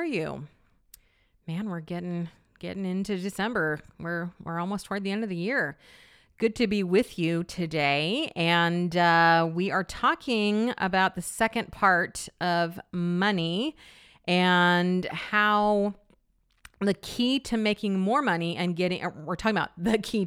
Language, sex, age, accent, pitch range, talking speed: English, female, 40-59, American, 170-210 Hz, 140 wpm